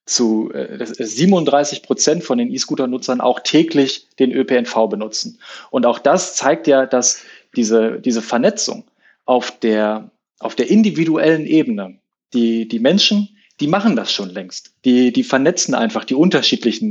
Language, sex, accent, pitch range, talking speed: German, male, German, 125-165 Hz, 145 wpm